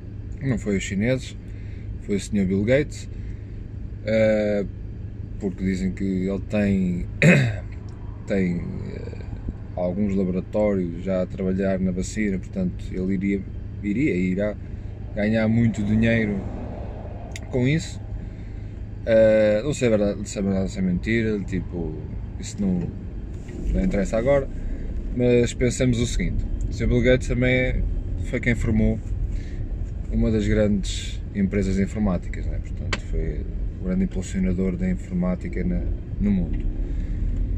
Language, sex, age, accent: Portuguese, male, 20-39, Portuguese